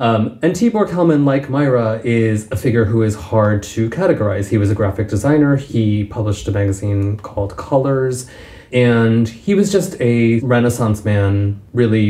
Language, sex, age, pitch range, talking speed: English, male, 30-49, 100-120 Hz, 165 wpm